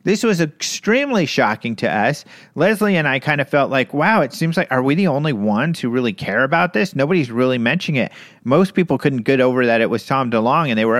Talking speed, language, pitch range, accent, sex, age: 240 wpm, English, 125-170 Hz, American, male, 40-59